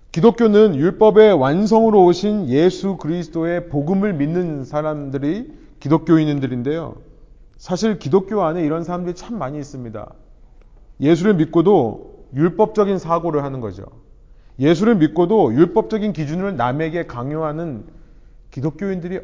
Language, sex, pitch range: Korean, male, 125-185 Hz